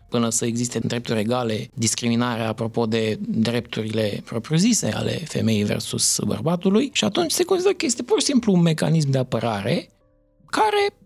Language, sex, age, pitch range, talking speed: Romanian, male, 20-39, 120-175 Hz, 155 wpm